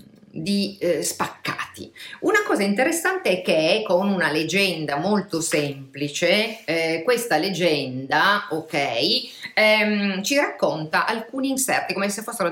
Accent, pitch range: native, 155-210 Hz